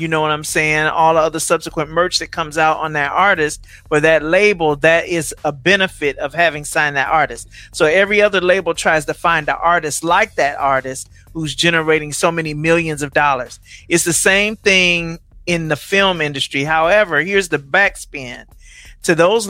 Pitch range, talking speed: 155-190 Hz, 185 wpm